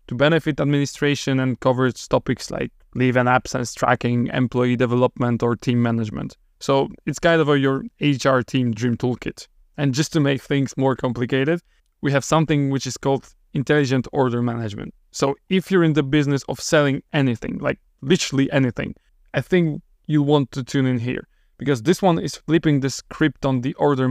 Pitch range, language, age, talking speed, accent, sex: 125-145 Hz, English, 20-39, 180 wpm, Mexican, male